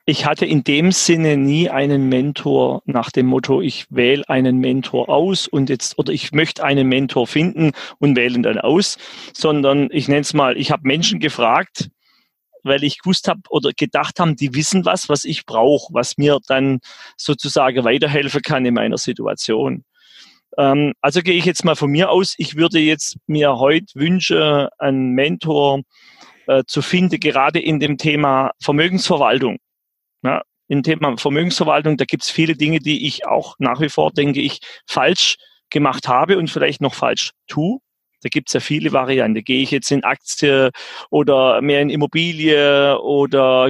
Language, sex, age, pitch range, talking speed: German, male, 30-49, 135-160 Hz, 170 wpm